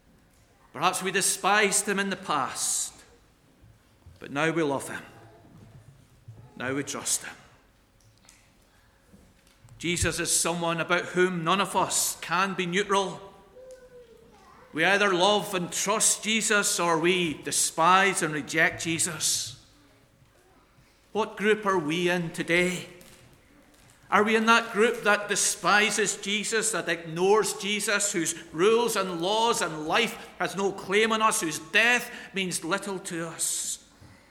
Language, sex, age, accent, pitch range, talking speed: English, male, 40-59, British, 150-205 Hz, 130 wpm